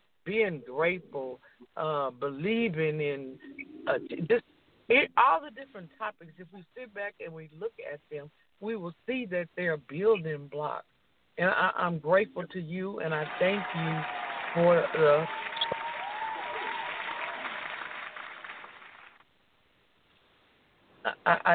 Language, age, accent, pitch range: English, 60-79, American, 150-205 Hz